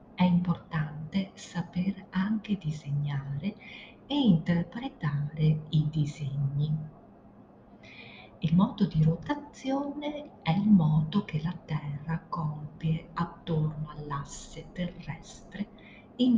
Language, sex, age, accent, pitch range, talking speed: Italian, female, 40-59, native, 155-205 Hz, 90 wpm